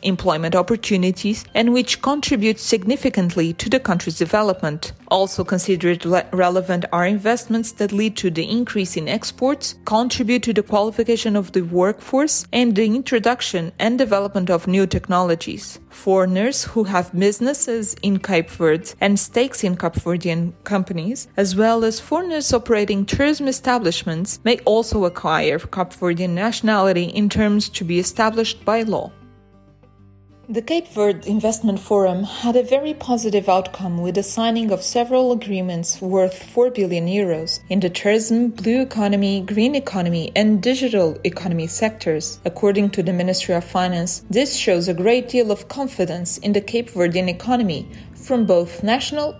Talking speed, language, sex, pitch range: 145 wpm, English, female, 180-230 Hz